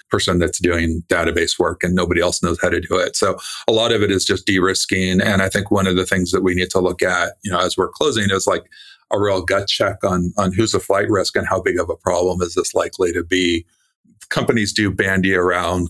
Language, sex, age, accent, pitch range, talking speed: English, male, 40-59, American, 90-100 Hz, 250 wpm